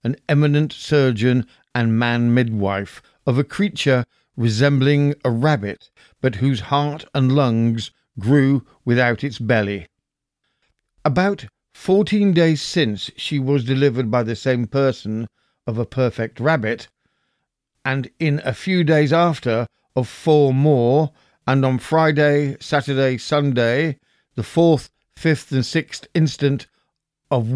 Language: English